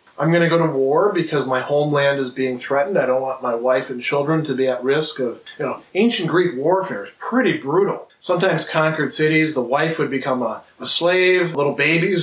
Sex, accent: male, American